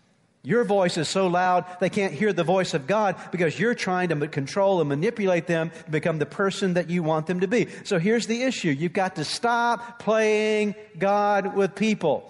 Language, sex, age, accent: English, male, 50-69, American